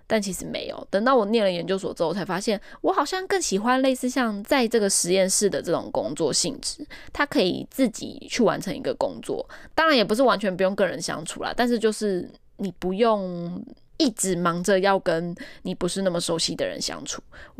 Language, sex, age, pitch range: Chinese, female, 10-29, 185-260 Hz